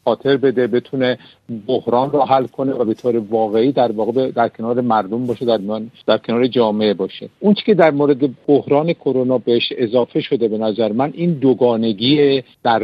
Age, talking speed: 50-69, 175 wpm